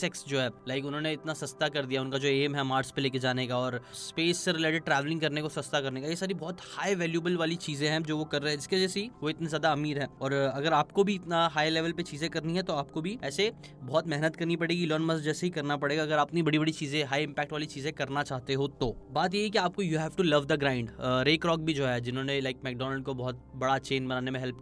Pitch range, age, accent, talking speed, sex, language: 135-160 Hz, 10-29, native, 160 wpm, male, Hindi